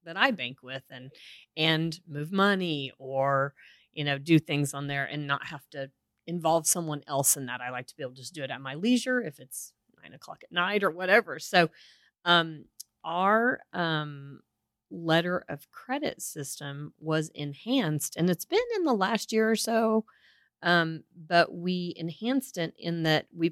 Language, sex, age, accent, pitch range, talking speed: English, female, 40-59, American, 140-175 Hz, 180 wpm